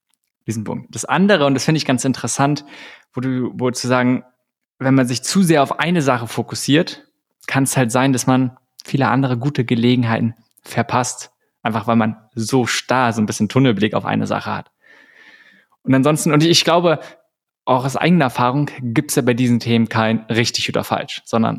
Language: German